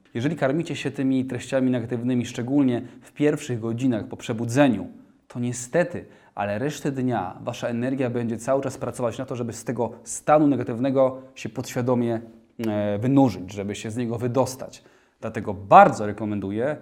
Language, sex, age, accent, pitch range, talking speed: Polish, male, 20-39, native, 115-135 Hz, 150 wpm